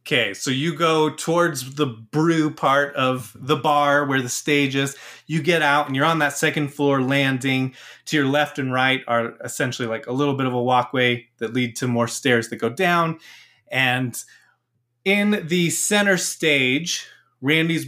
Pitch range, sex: 120-155 Hz, male